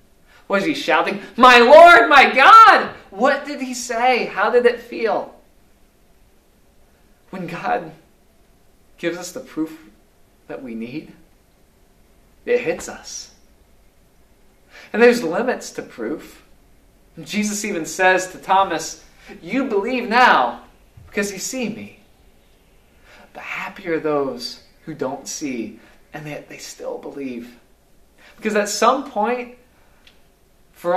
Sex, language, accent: male, English, American